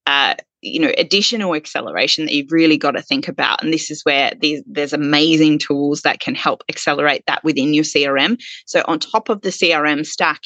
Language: English